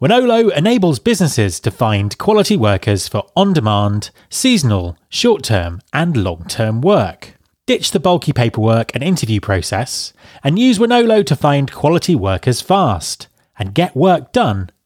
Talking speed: 135 wpm